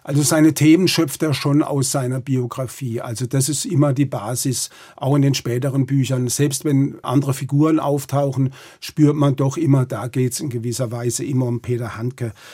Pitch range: 130-155 Hz